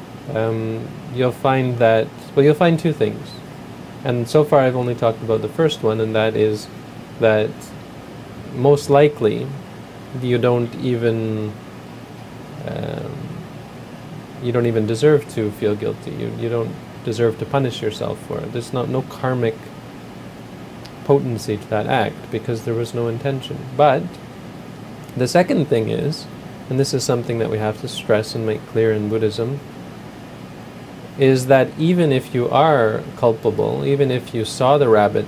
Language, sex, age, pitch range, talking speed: English, male, 30-49, 110-140 Hz, 155 wpm